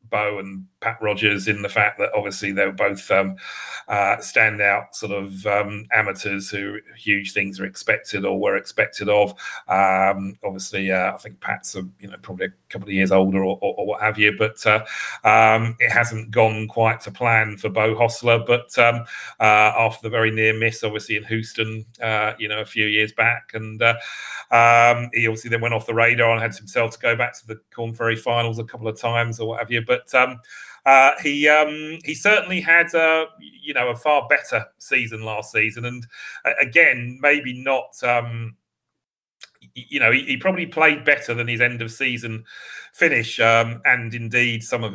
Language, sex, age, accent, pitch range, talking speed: English, male, 40-59, British, 105-120 Hz, 195 wpm